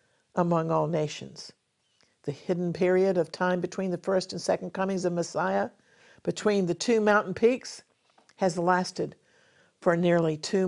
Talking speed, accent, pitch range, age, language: 145 wpm, American, 175-220 Hz, 60-79, English